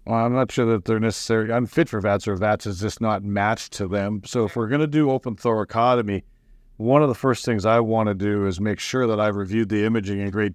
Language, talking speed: English, 250 wpm